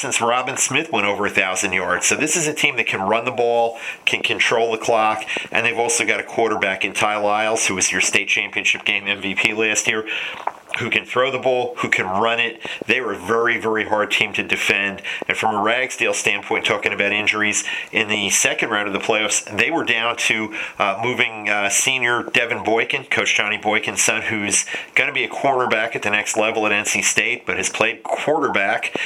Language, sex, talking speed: English, male, 215 wpm